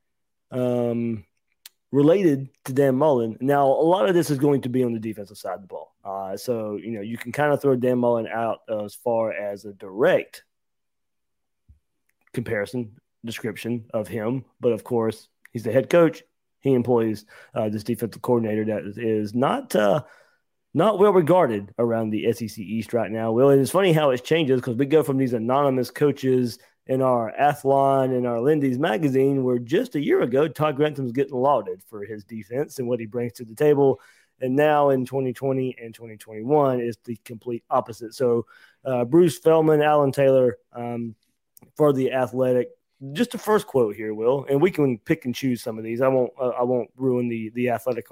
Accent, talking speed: American, 190 wpm